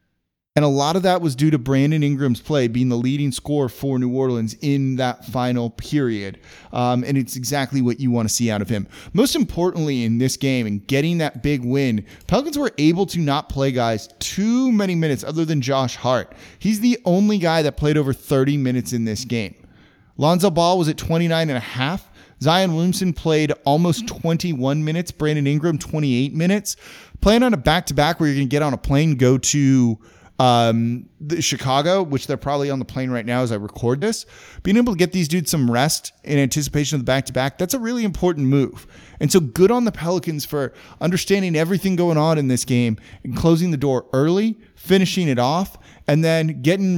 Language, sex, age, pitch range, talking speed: English, male, 30-49, 125-165 Hz, 205 wpm